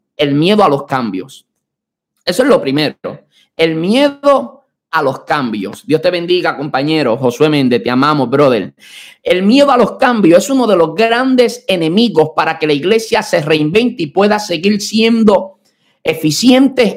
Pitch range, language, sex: 160-245 Hz, Spanish, male